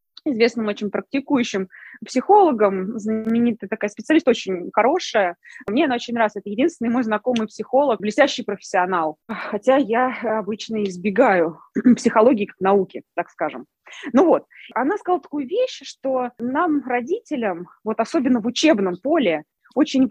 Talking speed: 130 wpm